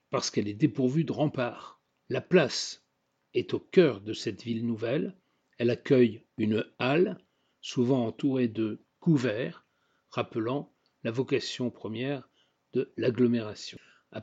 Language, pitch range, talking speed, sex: French, 115-150 Hz, 125 wpm, male